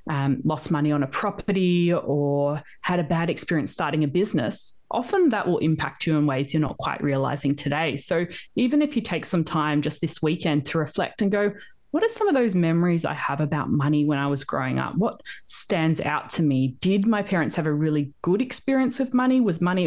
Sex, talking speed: female, 215 wpm